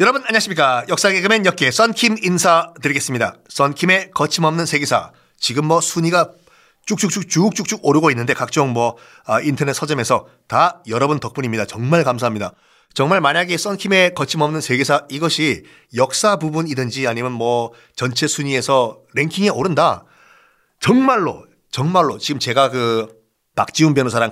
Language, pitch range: Korean, 125-185 Hz